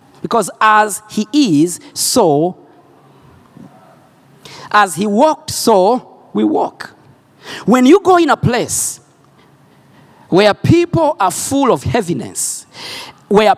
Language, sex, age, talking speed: Swedish, male, 50-69, 105 wpm